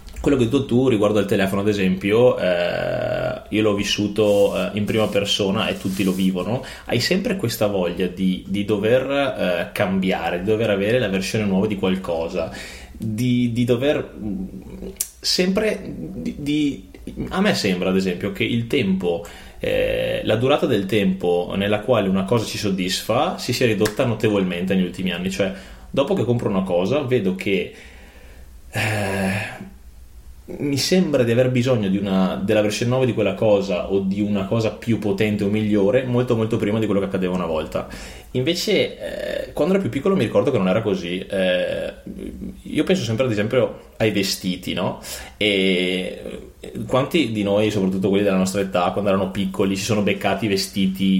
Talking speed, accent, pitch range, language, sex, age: 170 wpm, native, 95-115 Hz, Italian, male, 20-39